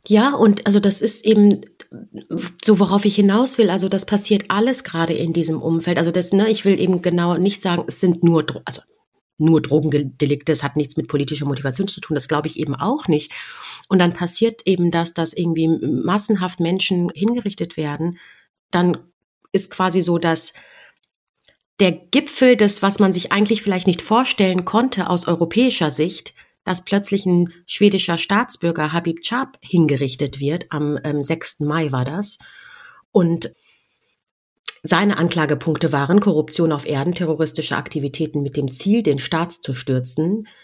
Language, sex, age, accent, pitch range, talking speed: German, female, 30-49, German, 155-200 Hz, 160 wpm